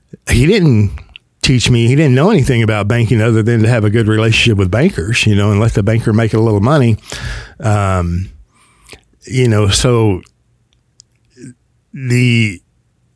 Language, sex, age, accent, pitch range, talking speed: English, male, 50-69, American, 100-120 Hz, 155 wpm